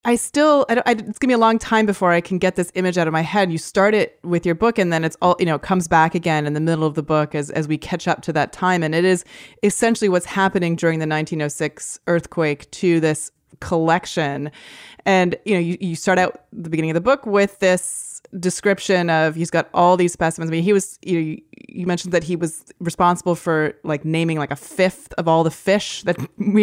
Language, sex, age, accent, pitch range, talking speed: English, female, 30-49, American, 160-200 Hz, 245 wpm